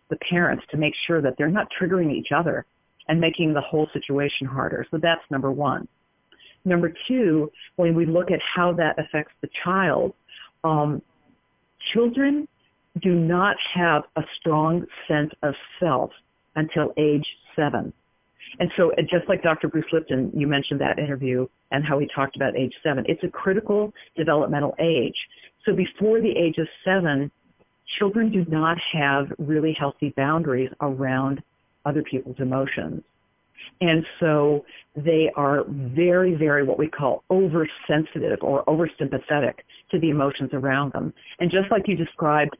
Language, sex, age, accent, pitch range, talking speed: English, female, 50-69, American, 140-170 Hz, 150 wpm